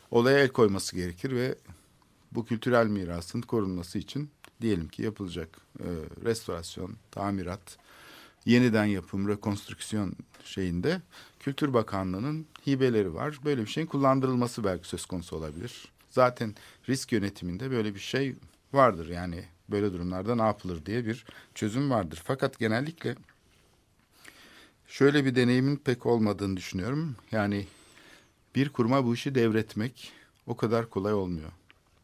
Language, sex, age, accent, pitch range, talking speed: Turkish, male, 50-69, native, 95-125 Hz, 120 wpm